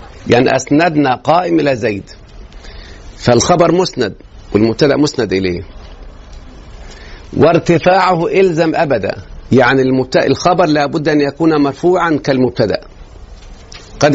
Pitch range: 110-155 Hz